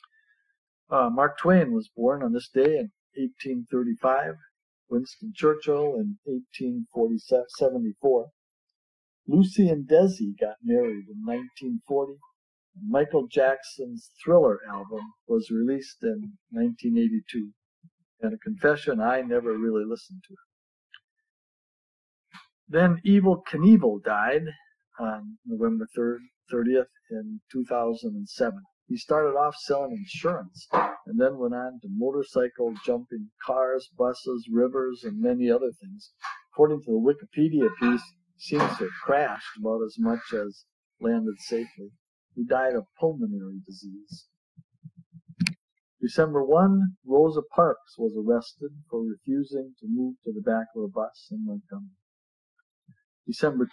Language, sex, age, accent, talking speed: English, male, 50-69, American, 115 wpm